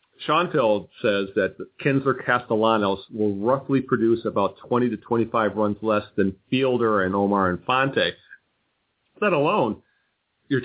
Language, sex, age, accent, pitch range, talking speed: English, male, 40-59, American, 105-130 Hz, 125 wpm